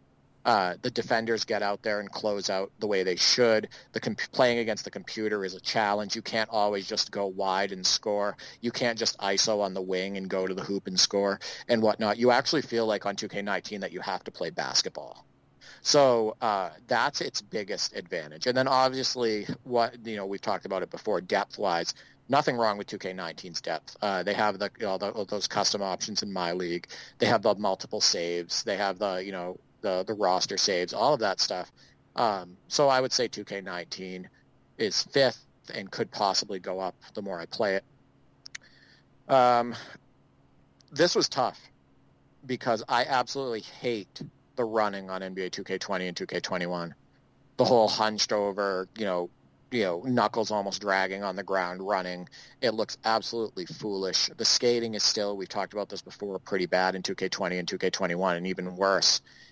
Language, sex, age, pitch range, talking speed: English, male, 30-49, 95-110 Hz, 195 wpm